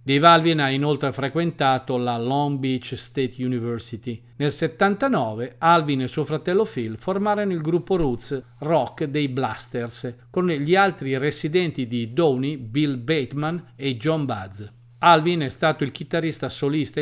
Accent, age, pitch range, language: native, 40-59, 125-160 Hz, Italian